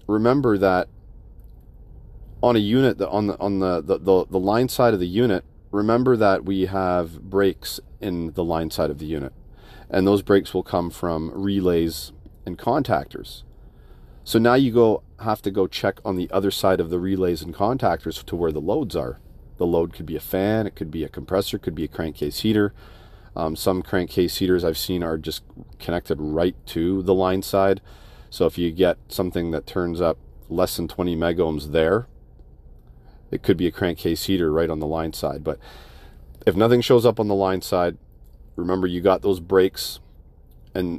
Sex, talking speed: male, 190 wpm